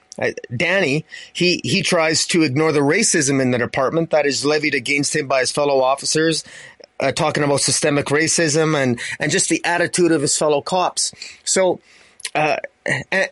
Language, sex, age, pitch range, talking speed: English, male, 30-49, 145-170 Hz, 165 wpm